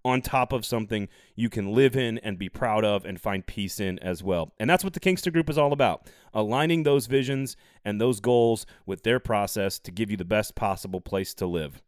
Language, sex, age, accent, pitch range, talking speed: English, male, 30-49, American, 110-160 Hz, 225 wpm